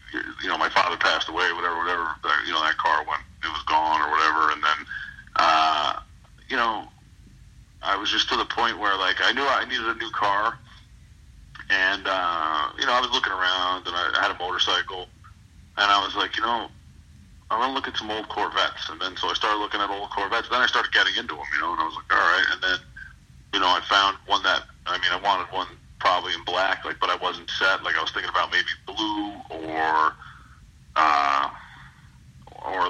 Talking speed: 215 wpm